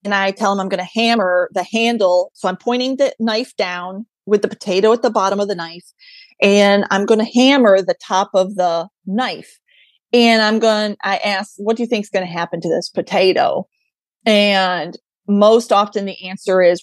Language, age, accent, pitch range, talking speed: English, 30-49, American, 190-245 Hz, 205 wpm